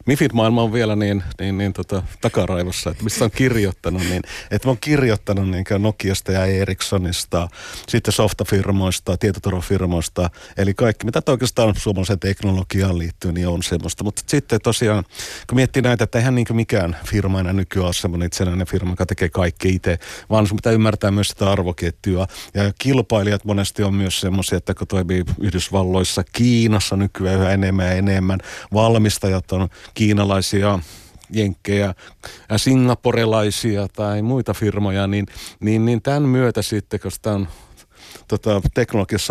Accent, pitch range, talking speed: native, 95-110 Hz, 145 wpm